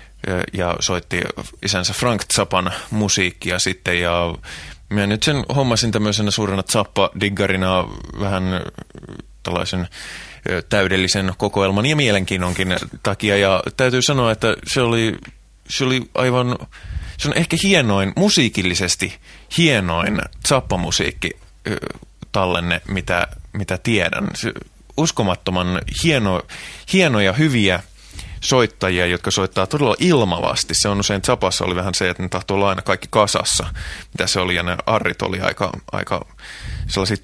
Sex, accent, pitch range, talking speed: male, native, 90-110 Hz, 120 wpm